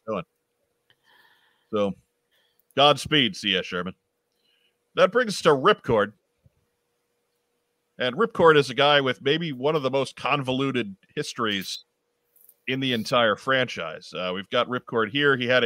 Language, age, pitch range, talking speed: English, 40-59, 110-145 Hz, 130 wpm